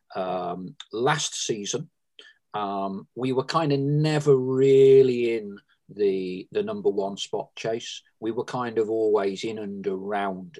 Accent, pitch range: British, 100-155 Hz